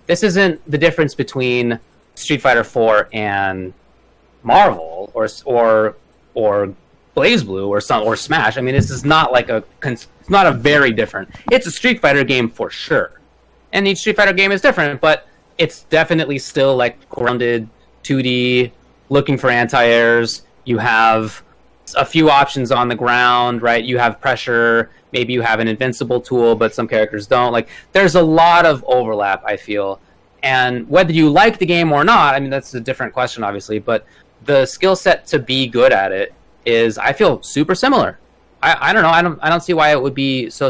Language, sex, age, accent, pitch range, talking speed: English, male, 30-49, American, 115-155 Hz, 190 wpm